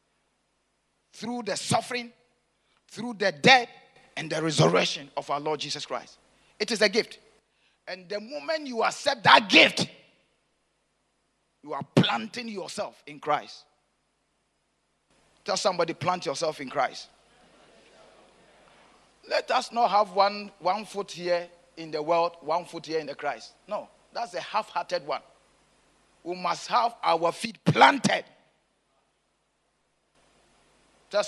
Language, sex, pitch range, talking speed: English, male, 160-215 Hz, 125 wpm